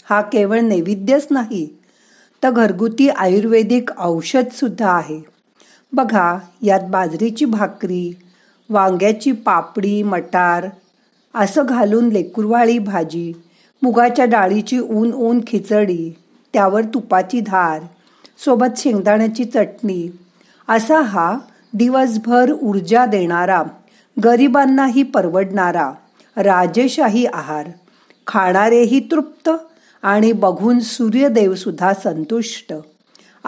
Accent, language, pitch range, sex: native, Marathi, 190-245 Hz, female